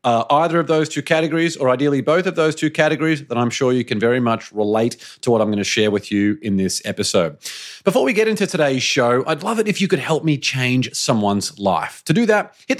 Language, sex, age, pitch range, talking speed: English, male, 30-49, 120-165 Hz, 250 wpm